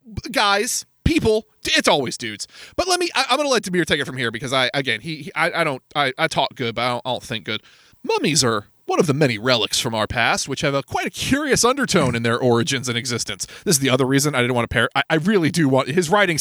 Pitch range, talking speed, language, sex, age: 125-205 Hz, 270 wpm, English, male, 30-49